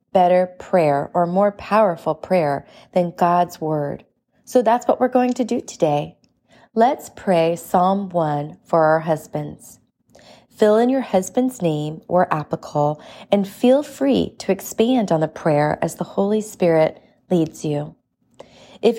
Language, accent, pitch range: English, American, 160-205 Hz